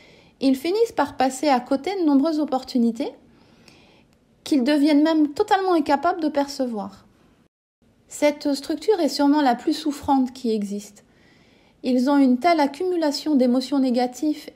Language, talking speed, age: French, 130 wpm, 30-49